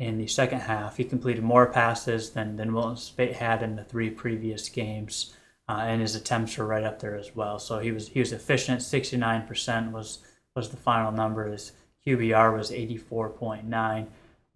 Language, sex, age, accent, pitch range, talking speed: English, male, 20-39, American, 115-130 Hz, 180 wpm